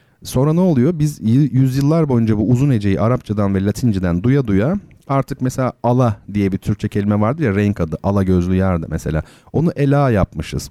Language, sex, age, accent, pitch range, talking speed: Turkish, male, 40-59, native, 100-135 Hz, 185 wpm